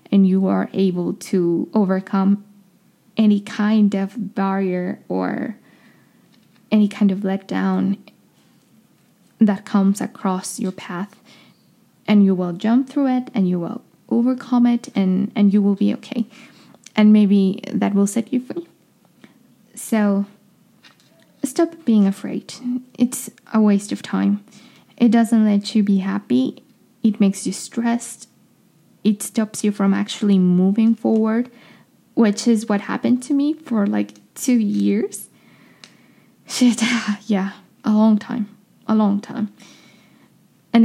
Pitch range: 195-230 Hz